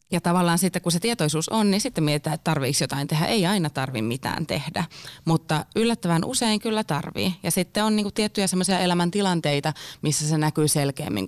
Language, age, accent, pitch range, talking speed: Finnish, 20-39, native, 150-170 Hz, 180 wpm